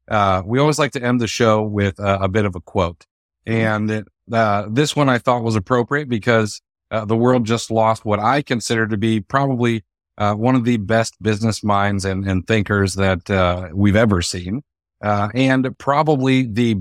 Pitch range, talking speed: 95-120 Hz, 195 wpm